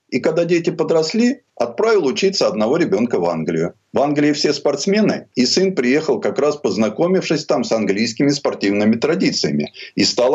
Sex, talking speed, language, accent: male, 155 wpm, Russian, native